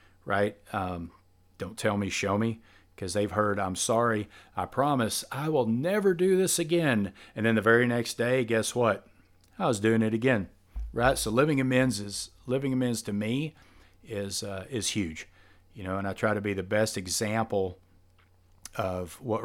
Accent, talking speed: American, 180 wpm